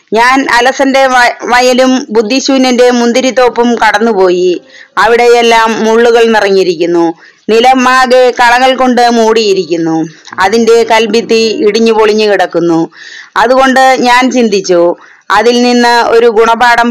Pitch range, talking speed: 210-245 Hz, 90 wpm